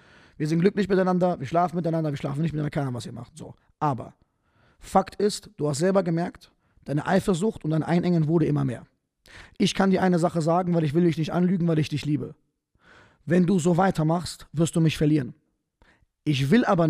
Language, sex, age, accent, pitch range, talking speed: German, male, 20-39, German, 150-190 Hz, 210 wpm